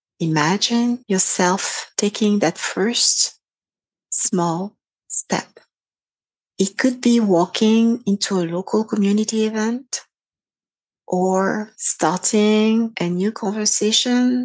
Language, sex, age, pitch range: English, female, 40-59, 180-220 Hz